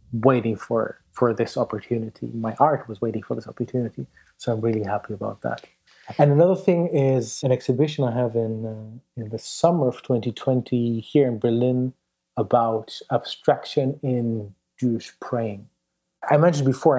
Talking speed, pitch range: 155 wpm, 115-140 Hz